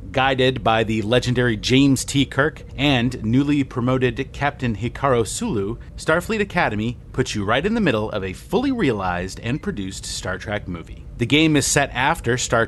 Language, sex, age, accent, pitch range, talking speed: English, male, 30-49, American, 110-155 Hz, 170 wpm